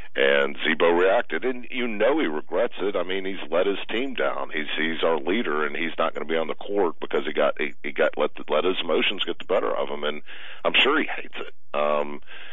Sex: male